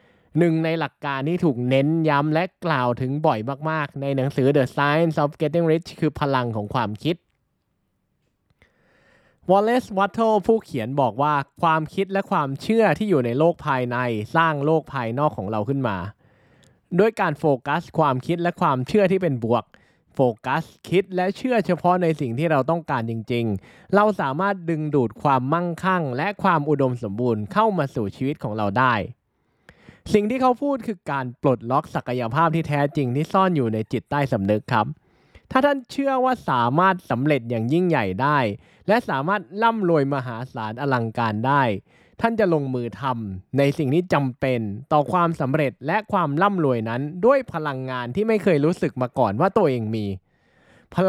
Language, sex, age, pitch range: Thai, male, 20-39, 130-180 Hz